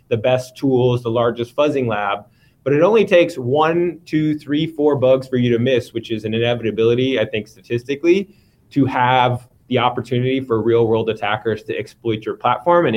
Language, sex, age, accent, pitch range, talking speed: English, male, 20-39, American, 115-145 Hz, 185 wpm